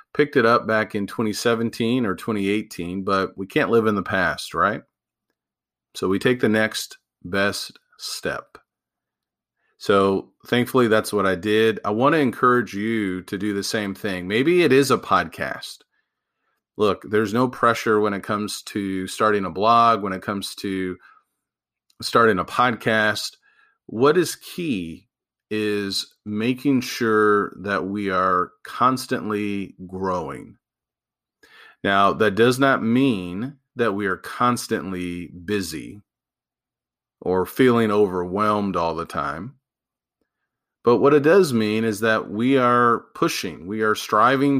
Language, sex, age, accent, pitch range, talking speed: English, male, 40-59, American, 100-120 Hz, 135 wpm